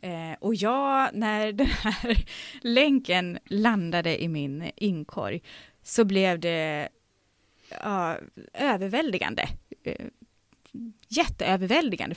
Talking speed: 75 wpm